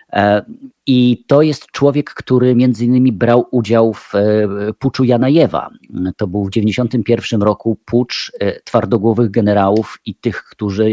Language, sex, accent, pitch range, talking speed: Polish, male, native, 100-115 Hz, 125 wpm